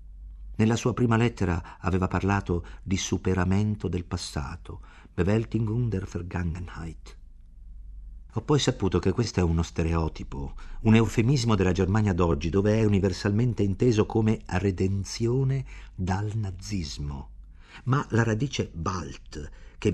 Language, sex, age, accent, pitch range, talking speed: Italian, male, 50-69, native, 85-115 Hz, 115 wpm